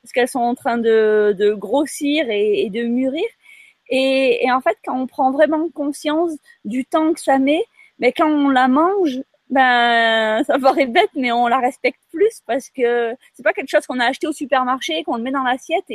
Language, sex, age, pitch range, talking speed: French, female, 30-49, 220-275 Hz, 215 wpm